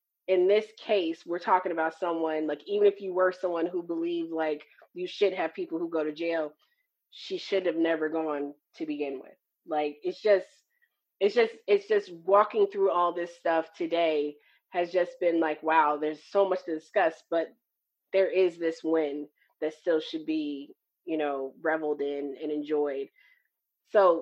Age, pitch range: 20-39, 155-190 Hz